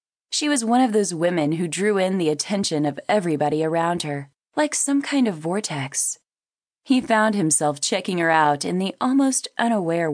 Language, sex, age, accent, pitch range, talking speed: English, female, 20-39, American, 155-220 Hz, 180 wpm